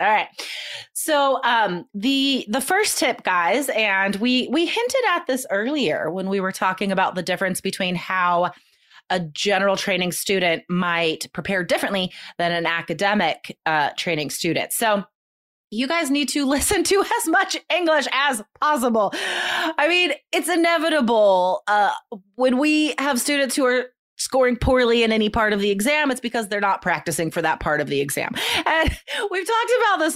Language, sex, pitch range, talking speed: English, female, 190-290 Hz, 170 wpm